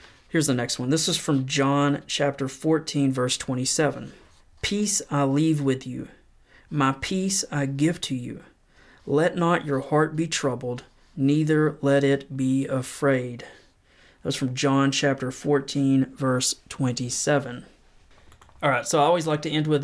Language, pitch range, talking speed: English, 135-155 Hz, 155 wpm